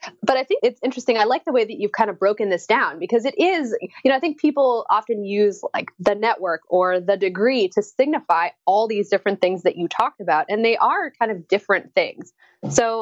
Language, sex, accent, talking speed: English, female, American, 230 wpm